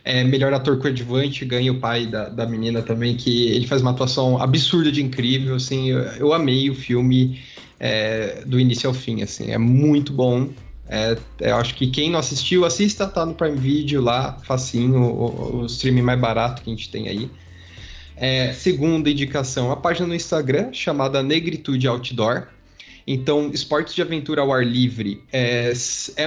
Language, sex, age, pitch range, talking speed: Portuguese, male, 20-39, 120-140 Hz, 170 wpm